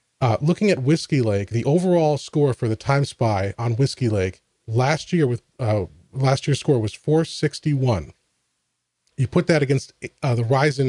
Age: 30-49